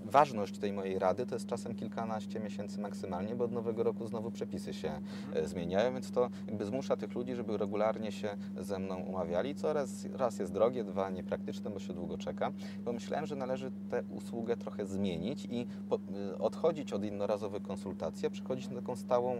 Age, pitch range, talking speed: 30-49, 100-130 Hz, 190 wpm